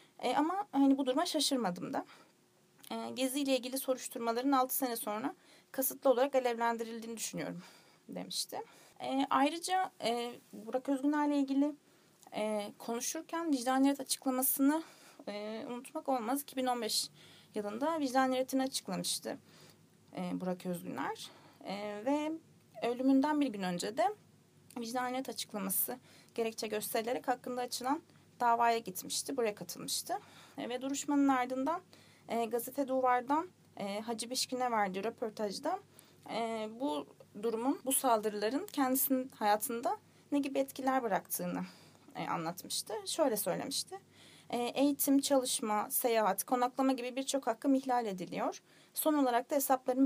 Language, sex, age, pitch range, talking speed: Turkish, female, 30-49, 235-280 Hz, 110 wpm